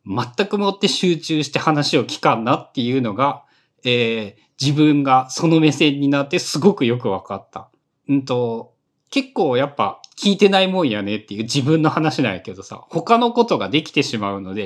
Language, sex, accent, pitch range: Japanese, male, native, 120-195 Hz